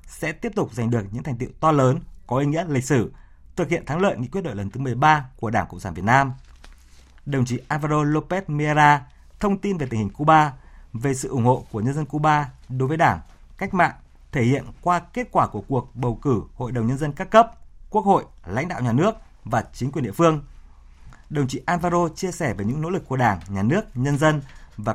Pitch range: 115-155 Hz